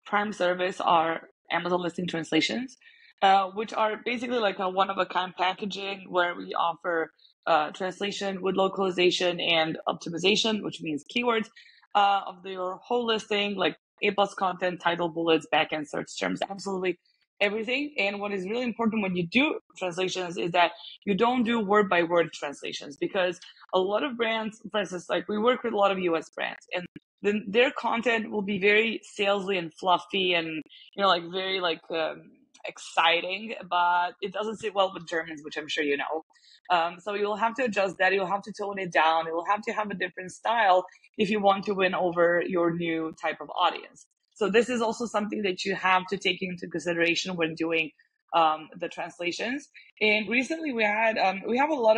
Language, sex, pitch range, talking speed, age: English, female, 175-215 Hz, 185 wpm, 20-39